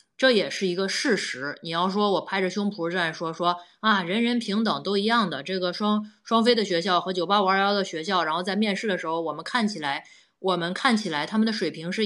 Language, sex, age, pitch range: Chinese, female, 20-39, 170-220 Hz